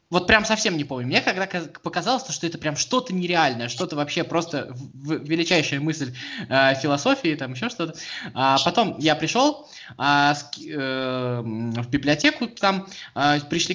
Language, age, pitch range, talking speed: Russian, 20-39, 140-195 Hz, 155 wpm